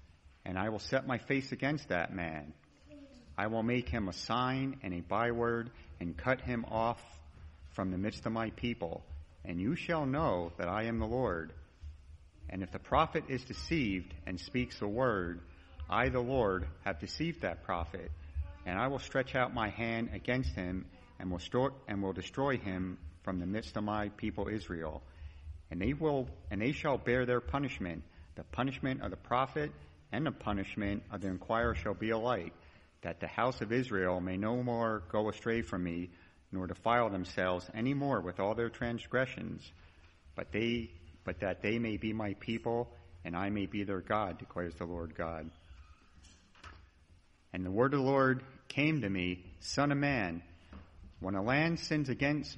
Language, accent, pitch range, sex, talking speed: English, American, 85-120 Hz, male, 175 wpm